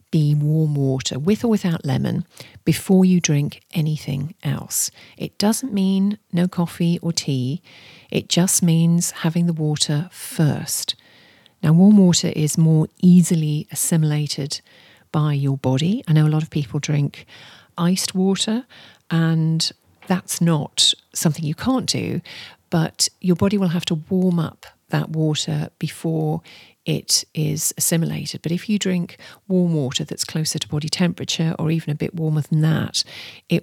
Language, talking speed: English, 150 wpm